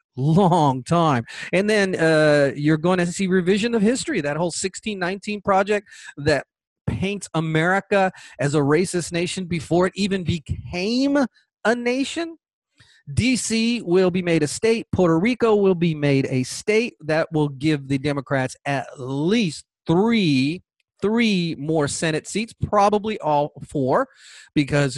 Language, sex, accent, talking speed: English, male, American, 140 wpm